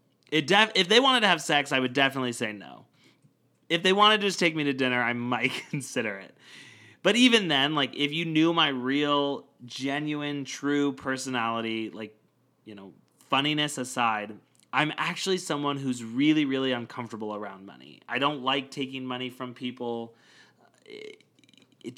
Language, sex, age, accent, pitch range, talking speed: English, male, 30-49, American, 120-150 Hz, 160 wpm